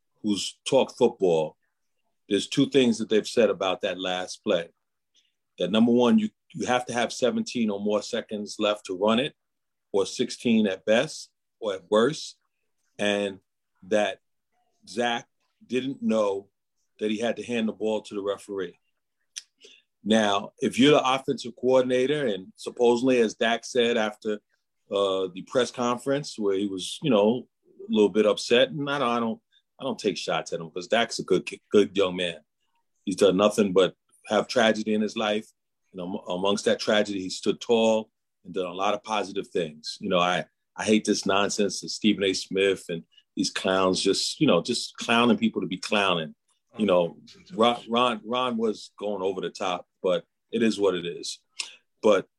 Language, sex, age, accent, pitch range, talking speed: English, male, 40-59, American, 100-120 Hz, 180 wpm